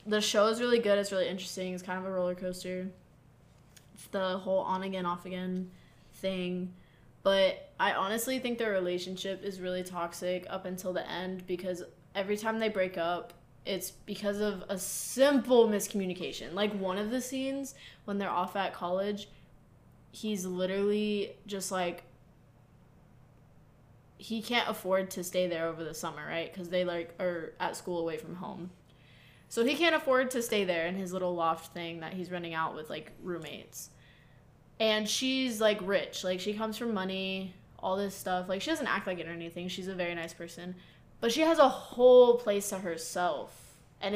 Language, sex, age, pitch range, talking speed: English, female, 20-39, 175-205 Hz, 180 wpm